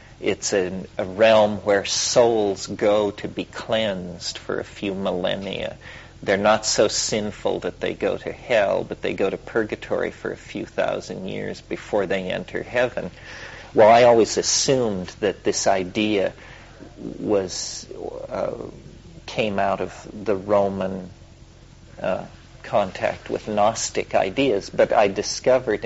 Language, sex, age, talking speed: English, male, 40-59, 135 wpm